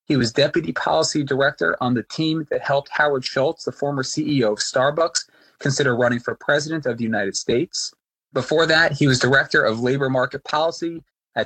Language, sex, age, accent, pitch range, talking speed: English, male, 30-49, American, 125-160 Hz, 185 wpm